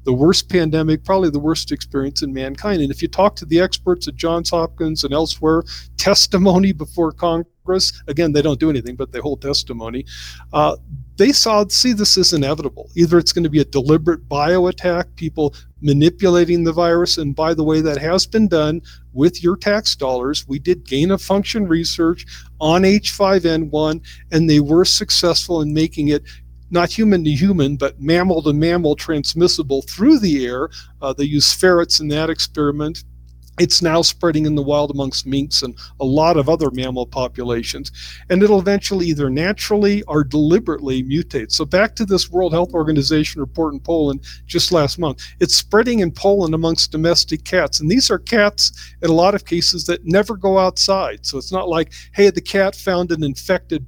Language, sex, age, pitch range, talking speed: English, male, 50-69, 145-180 Hz, 185 wpm